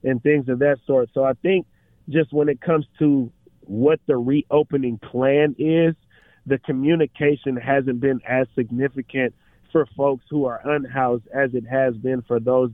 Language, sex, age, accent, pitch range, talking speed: English, male, 30-49, American, 130-145 Hz, 165 wpm